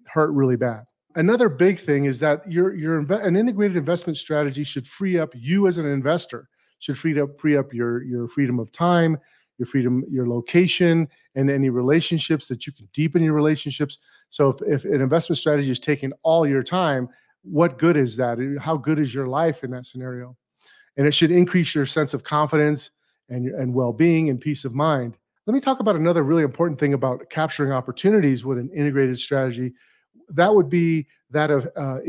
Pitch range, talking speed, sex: 135-170 Hz, 195 wpm, male